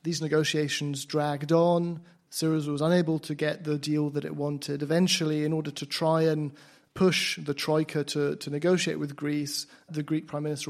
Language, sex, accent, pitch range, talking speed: English, male, British, 145-165 Hz, 180 wpm